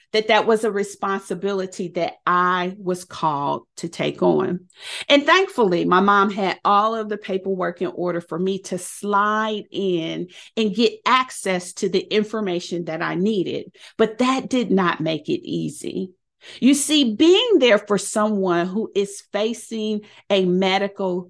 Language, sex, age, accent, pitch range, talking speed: English, female, 40-59, American, 185-250 Hz, 155 wpm